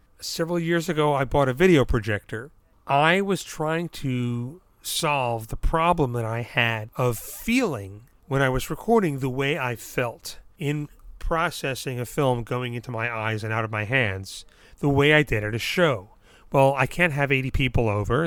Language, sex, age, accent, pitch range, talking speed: English, male, 40-59, American, 120-150 Hz, 180 wpm